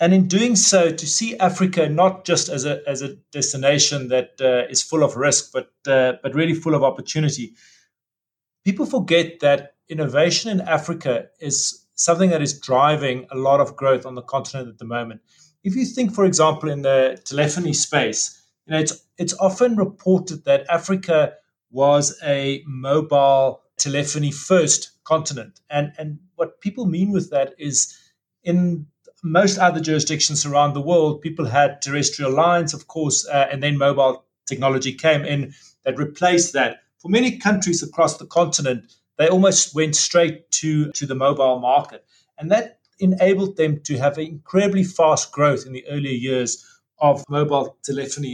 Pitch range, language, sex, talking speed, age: 140-175 Hz, English, male, 165 wpm, 30-49